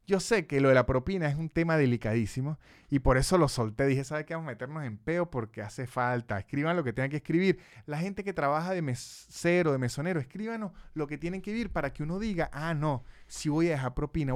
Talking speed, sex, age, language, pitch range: 245 wpm, male, 30-49, Spanish, 135-185 Hz